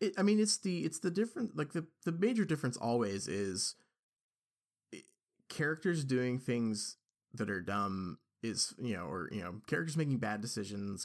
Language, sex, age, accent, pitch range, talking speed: English, male, 30-49, American, 105-130 Hz, 165 wpm